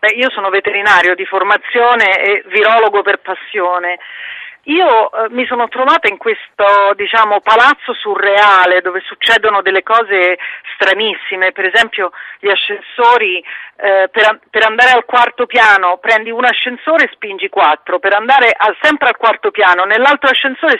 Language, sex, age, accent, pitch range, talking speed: Italian, female, 40-59, native, 190-245 Hz, 145 wpm